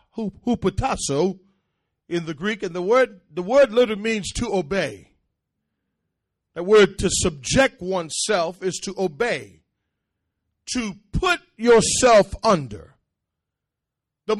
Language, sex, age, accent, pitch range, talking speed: English, male, 40-59, American, 165-250 Hz, 110 wpm